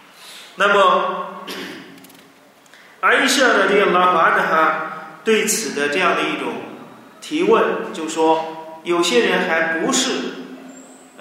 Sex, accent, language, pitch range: male, native, Chinese, 185-295 Hz